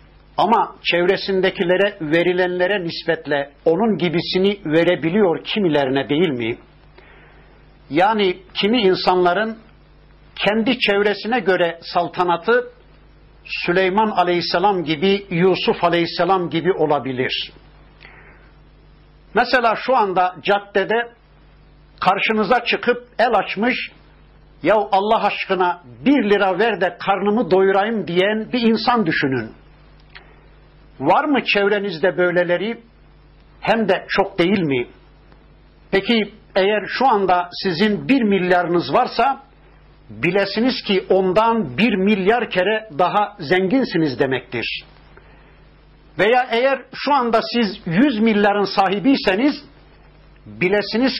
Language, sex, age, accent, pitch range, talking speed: Turkish, male, 60-79, native, 180-225 Hz, 95 wpm